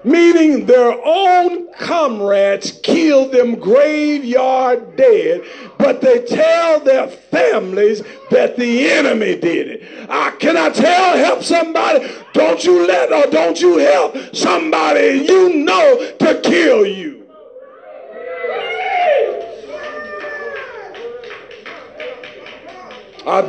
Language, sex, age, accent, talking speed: English, male, 50-69, American, 95 wpm